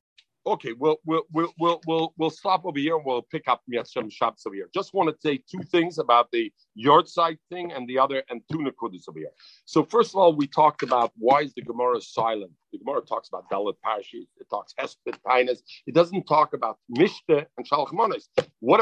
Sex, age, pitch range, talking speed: male, 50-69, 140-210 Hz, 200 wpm